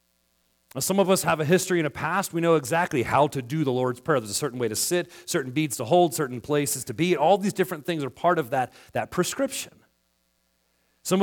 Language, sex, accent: English, male, American